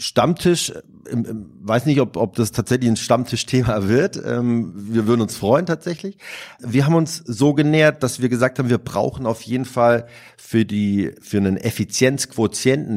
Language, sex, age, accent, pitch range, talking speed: German, male, 40-59, German, 105-125 Hz, 155 wpm